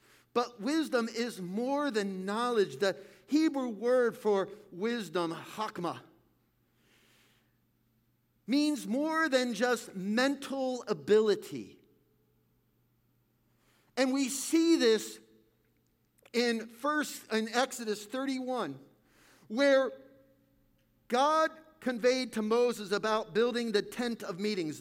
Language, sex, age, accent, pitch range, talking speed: English, male, 50-69, American, 190-265 Hz, 90 wpm